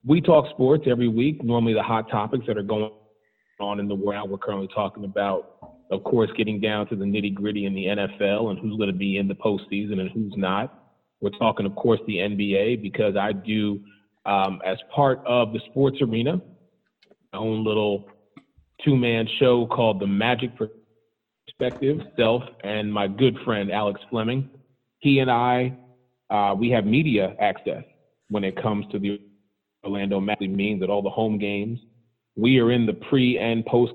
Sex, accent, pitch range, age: male, American, 105-125 Hz, 30-49